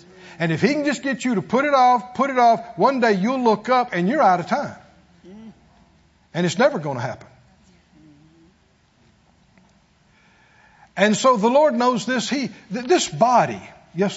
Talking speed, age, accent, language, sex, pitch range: 170 wpm, 60-79, American, English, male, 145-225 Hz